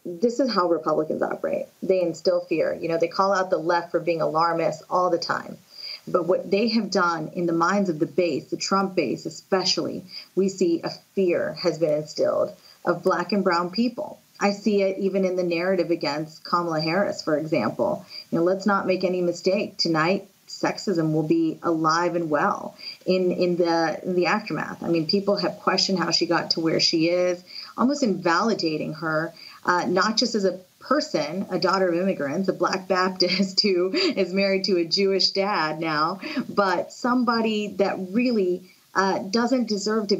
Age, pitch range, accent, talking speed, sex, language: 30-49, 175-200 Hz, American, 180 wpm, female, English